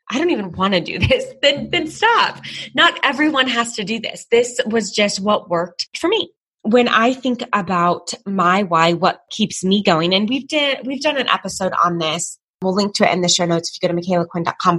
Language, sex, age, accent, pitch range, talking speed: English, female, 20-39, American, 170-210 Hz, 225 wpm